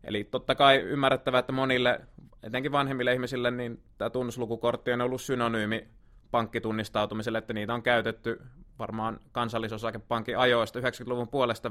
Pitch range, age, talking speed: 110-125 Hz, 20-39, 130 wpm